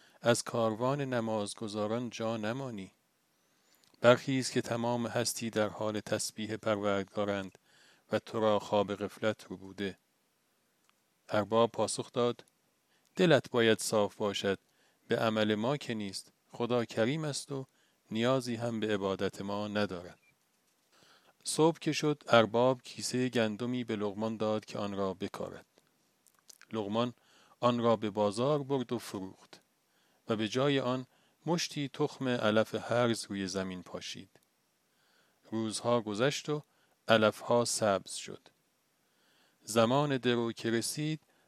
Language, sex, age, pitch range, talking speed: Persian, male, 40-59, 105-125 Hz, 120 wpm